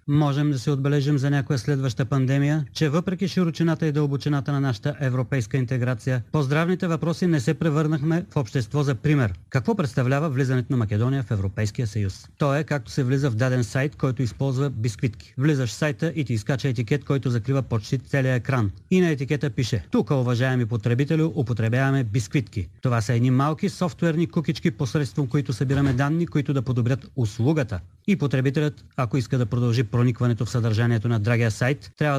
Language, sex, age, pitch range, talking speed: Bulgarian, male, 30-49, 125-150 Hz, 175 wpm